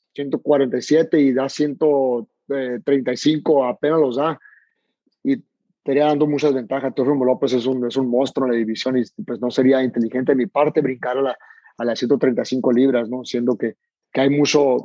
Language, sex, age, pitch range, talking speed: English, male, 30-49, 125-145 Hz, 175 wpm